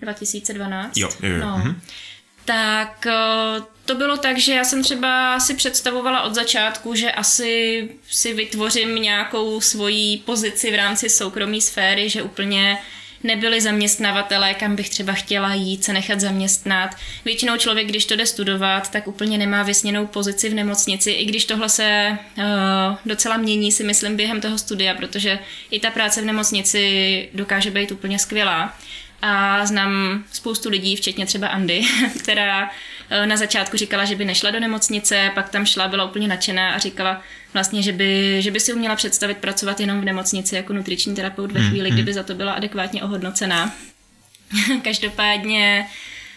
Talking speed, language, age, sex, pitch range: 155 wpm, Czech, 20-39, female, 195-220 Hz